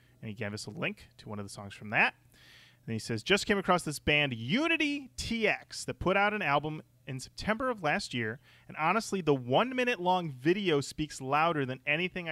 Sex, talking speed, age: male, 205 wpm, 30-49